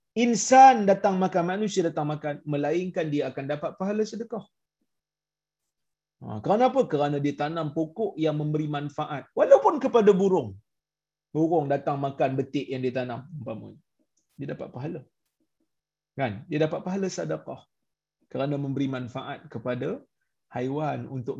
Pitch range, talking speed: 135-180 Hz, 130 wpm